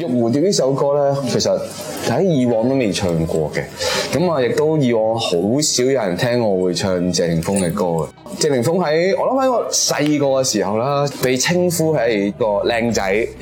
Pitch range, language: 100-140 Hz, Chinese